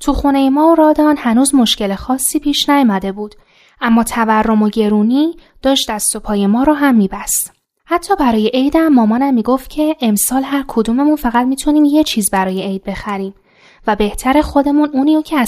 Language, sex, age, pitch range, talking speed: Persian, female, 10-29, 210-285 Hz, 165 wpm